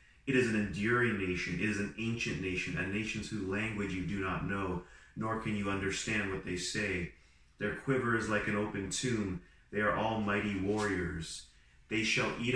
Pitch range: 90-120 Hz